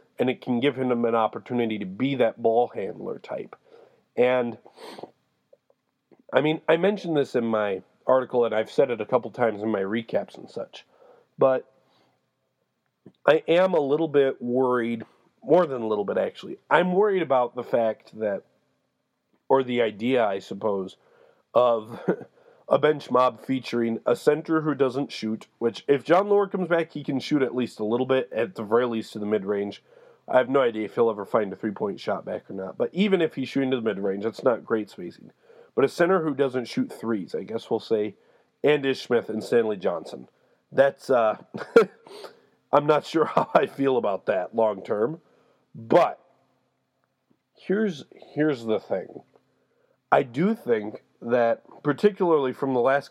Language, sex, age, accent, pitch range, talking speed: English, male, 40-59, American, 115-155 Hz, 175 wpm